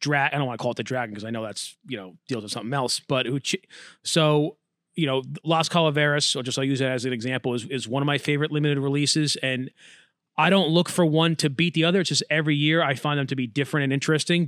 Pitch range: 135-165 Hz